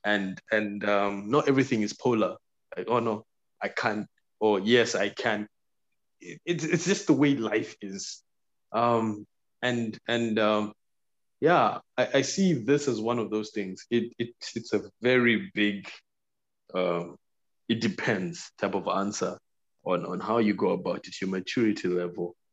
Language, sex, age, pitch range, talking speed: English, male, 20-39, 105-140 Hz, 160 wpm